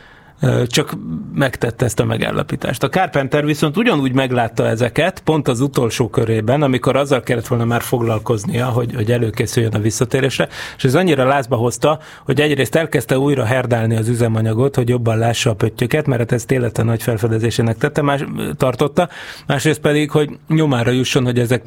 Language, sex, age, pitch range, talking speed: Hungarian, male, 30-49, 120-145 Hz, 160 wpm